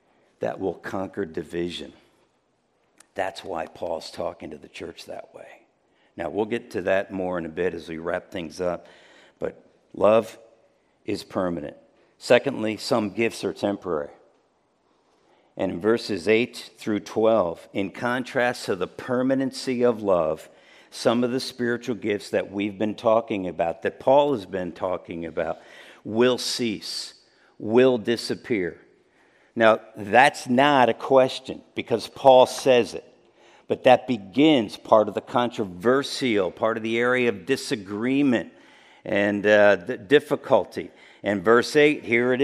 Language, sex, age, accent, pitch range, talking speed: English, male, 60-79, American, 105-140 Hz, 140 wpm